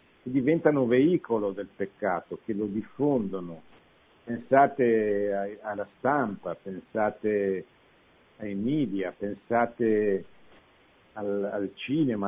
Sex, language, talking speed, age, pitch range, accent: male, Italian, 90 wpm, 60-79, 100-135 Hz, native